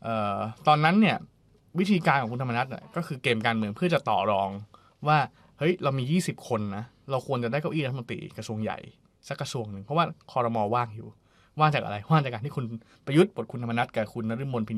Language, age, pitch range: Thai, 20-39, 105-135 Hz